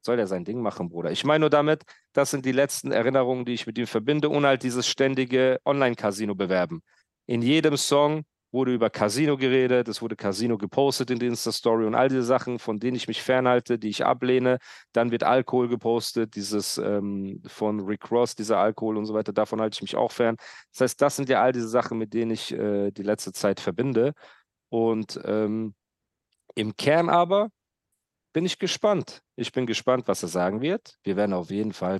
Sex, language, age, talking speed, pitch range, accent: male, German, 40-59, 200 wpm, 100-130 Hz, German